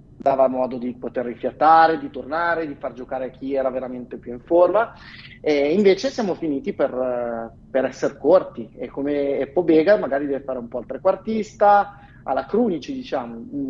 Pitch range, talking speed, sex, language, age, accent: 130-160 Hz, 165 wpm, male, Italian, 30-49, native